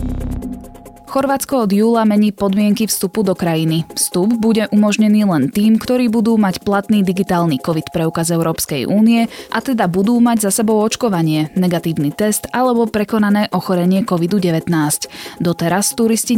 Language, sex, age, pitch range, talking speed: Slovak, female, 20-39, 165-215 Hz, 135 wpm